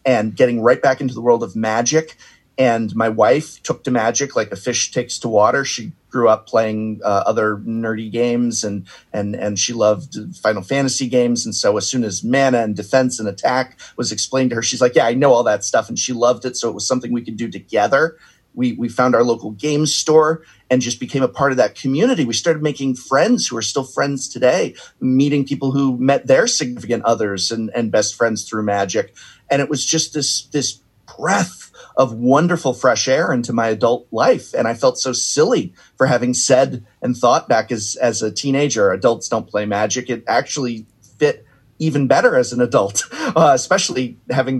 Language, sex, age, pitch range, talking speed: English, male, 30-49, 110-135 Hz, 205 wpm